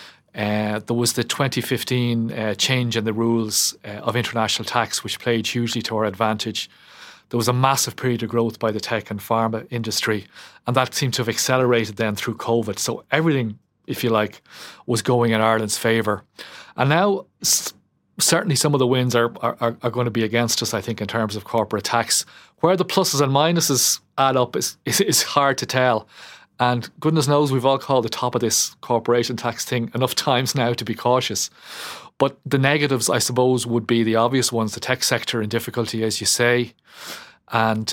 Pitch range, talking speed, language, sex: 110-130 Hz, 200 wpm, English, male